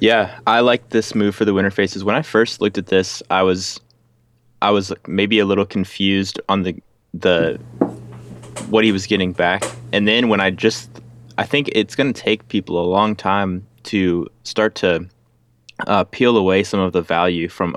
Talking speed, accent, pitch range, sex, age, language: 190 wpm, American, 90-105 Hz, male, 20-39, English